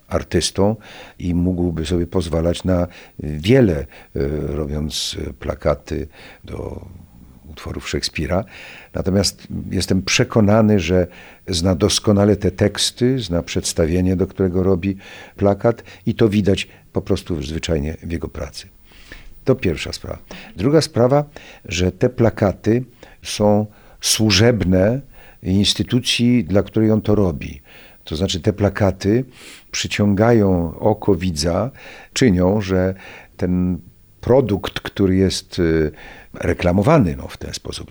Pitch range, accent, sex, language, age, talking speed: 85-105 Hz, native, male, Polish, 50-69, 110 wpm